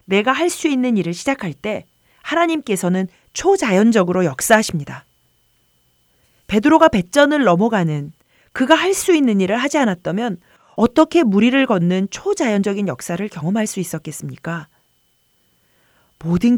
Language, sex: Korean, female